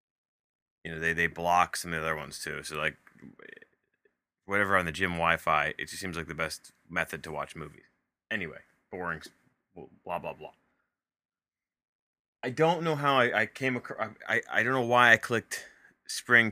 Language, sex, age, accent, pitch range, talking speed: English, male, 20-39, American, 85-115 Hz, 185 wpm